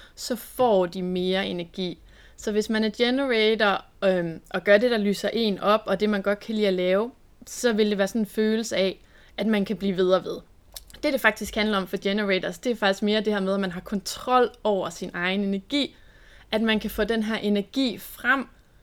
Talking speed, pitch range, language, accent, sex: 225 wpm, 185-220 Hz, English, Danish, female